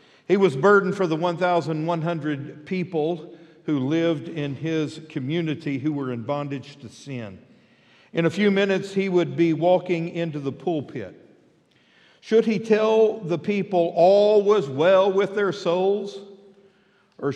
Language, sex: English, male